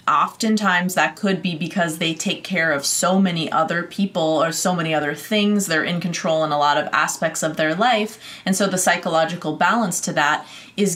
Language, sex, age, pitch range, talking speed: English, female, 20-39, 160-195 Hz, 205 wpm